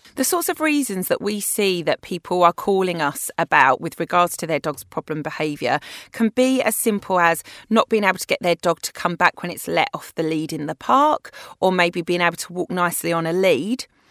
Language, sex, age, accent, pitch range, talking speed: English, female, 30-49, British, 160-190 Hz, 230 wpm